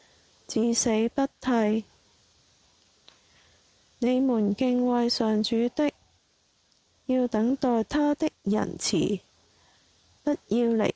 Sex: female